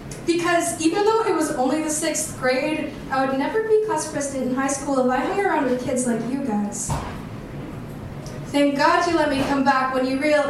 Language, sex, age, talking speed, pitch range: English, female, 10-29, 210 wpm, 245-300 Hz